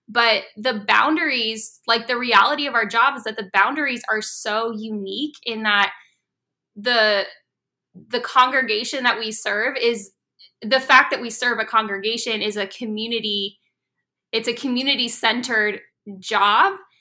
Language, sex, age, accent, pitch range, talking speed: English, female, 10-29, American, 205-245 Hz, 140 wpm